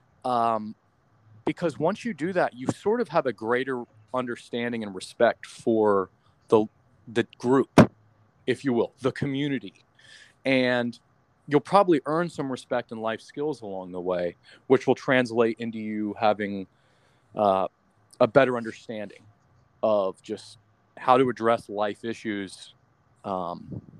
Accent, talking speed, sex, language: American, 135 wpm, male, English